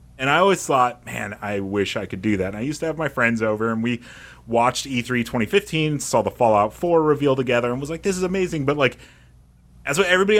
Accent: American